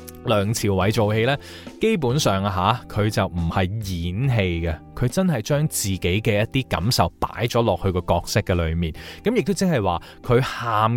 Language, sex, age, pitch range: Chinese, male, 20-39, 95-125 Hz